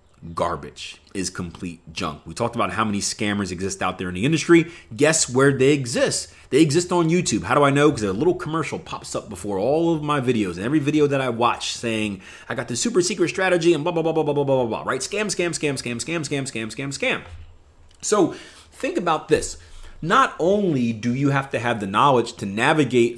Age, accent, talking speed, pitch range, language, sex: 30-49, American, 225 wpm, 110-160 Hz, English, male